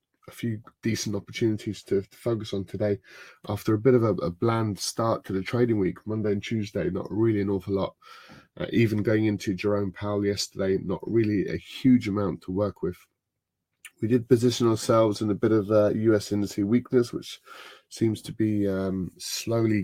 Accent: British